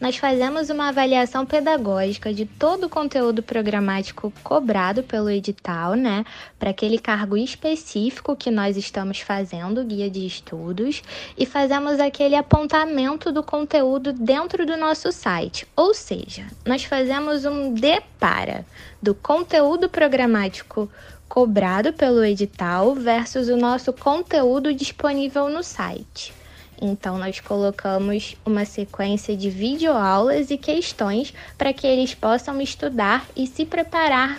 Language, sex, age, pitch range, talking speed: Portuguese, female, 10-29, 205-285 Hz, 125 wpm